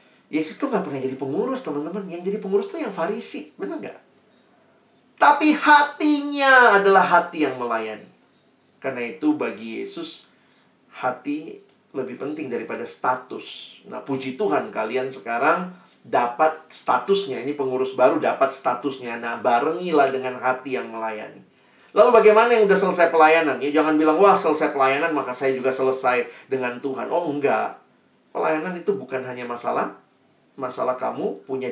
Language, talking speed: Indonesian, 145 wpm